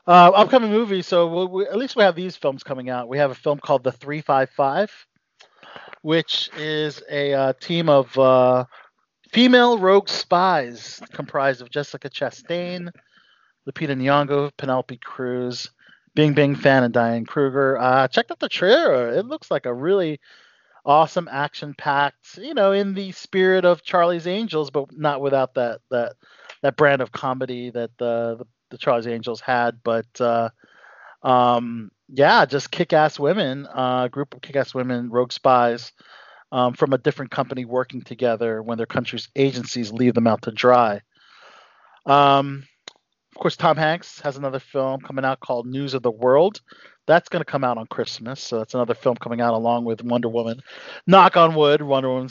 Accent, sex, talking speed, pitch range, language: American, male, 170 wpm, 125-155 Hz, English